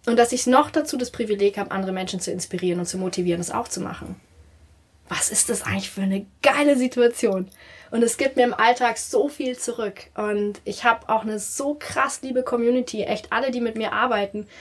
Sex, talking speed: female, 210 wpm